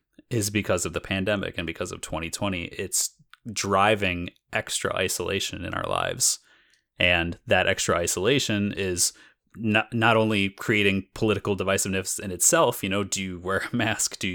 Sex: male